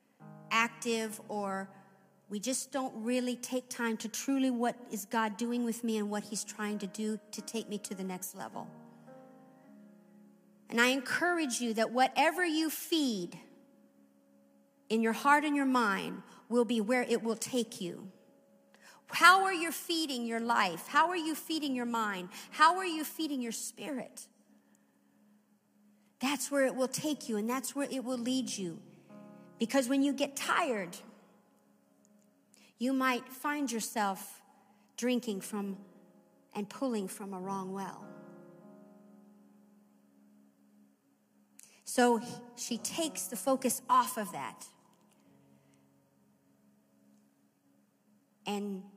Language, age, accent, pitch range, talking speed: English, 50-69, American, 185-245 Hz, 130 wpm